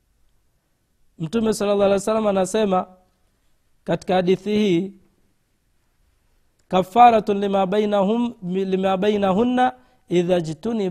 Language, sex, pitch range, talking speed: Swahili, male, 150-205 Hz, 70 wpm